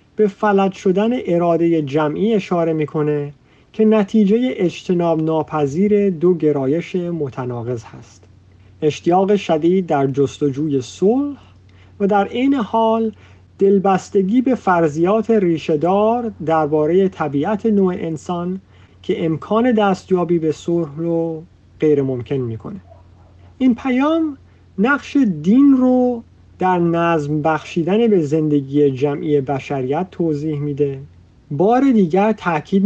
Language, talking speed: Persian, 105 wpm